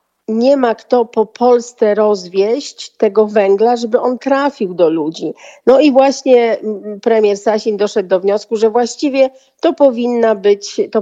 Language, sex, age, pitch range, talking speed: Polish, female, 40-59, 205-250 Hz, 145 wpm